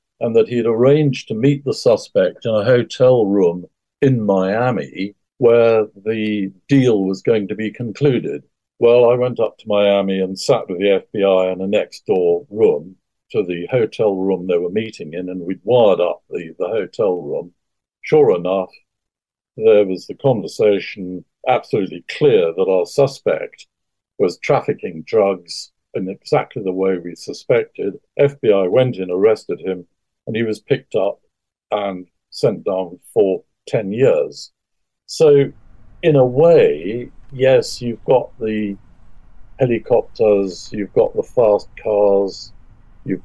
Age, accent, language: 60-79, British, English